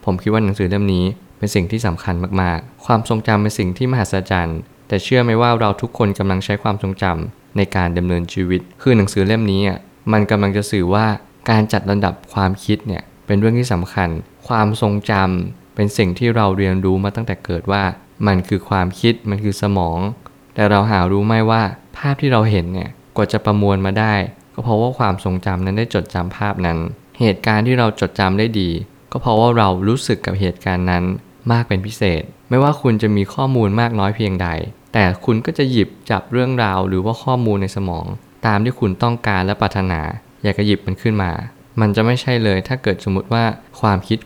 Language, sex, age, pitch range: Thai, male, 20-39, 95-115 Hz